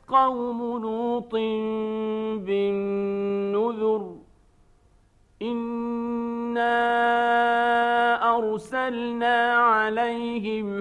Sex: male